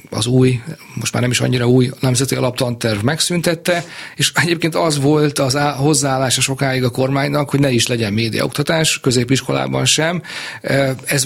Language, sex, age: Hungarian, male, 40-59